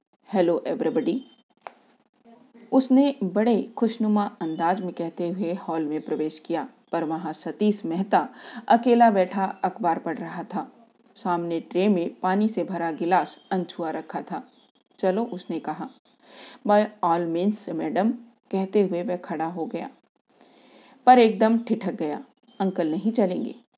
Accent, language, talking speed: native, Hindi, 135 wpm